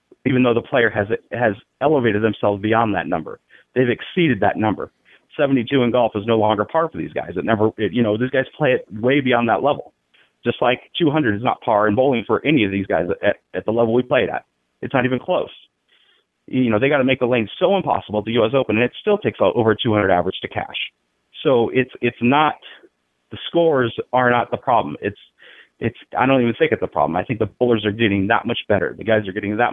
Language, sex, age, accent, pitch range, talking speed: English, male, 30-49, American, 105-135 Hz, 240 wpm